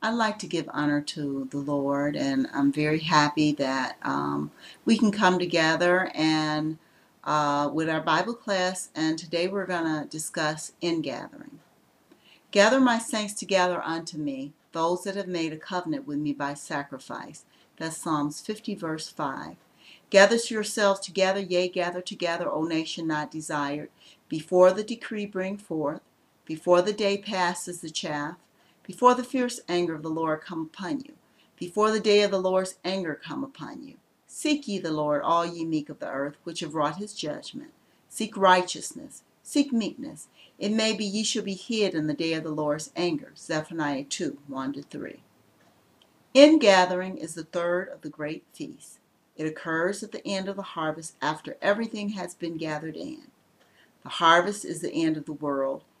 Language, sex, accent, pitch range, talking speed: English, female, American, 155-200 Hz, 170 wpm